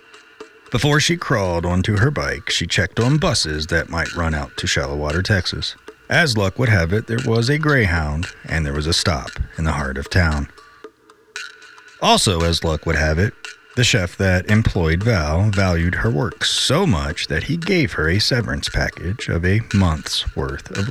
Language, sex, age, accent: English, male, 40-59, American